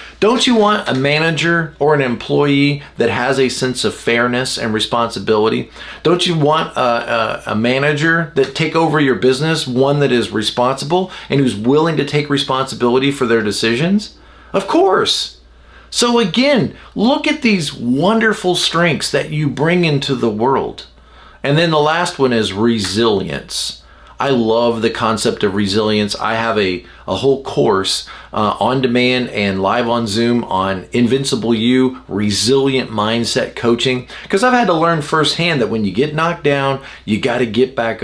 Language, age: English, 40-59